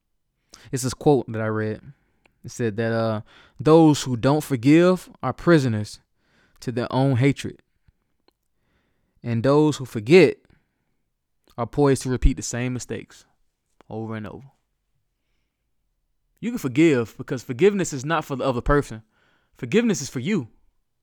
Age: 20-39